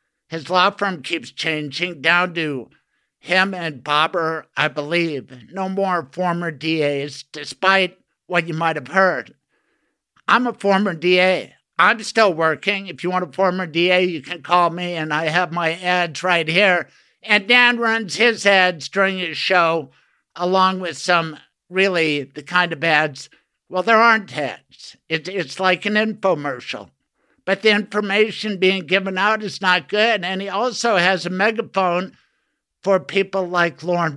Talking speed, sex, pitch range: 155 wpm, male, 165-200 Hz